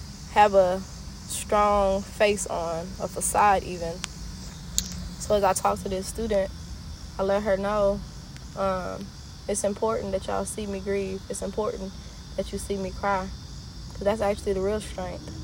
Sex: female